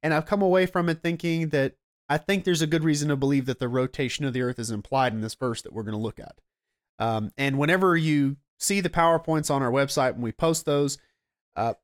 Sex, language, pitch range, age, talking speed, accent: male, English, 130-165 Hz, 30-49, 245 wpm, American